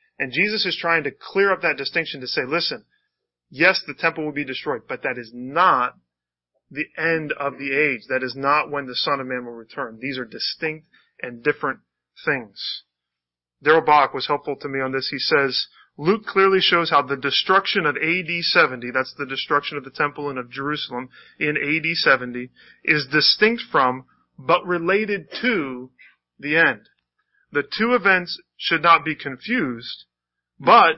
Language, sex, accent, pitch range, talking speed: English, male, American, 130-165 Hz, 170 wpm